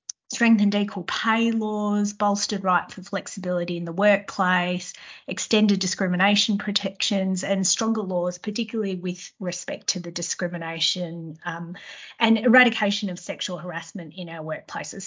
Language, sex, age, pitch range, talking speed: English, female, 30-49, 175-220 Hz, 125 wpm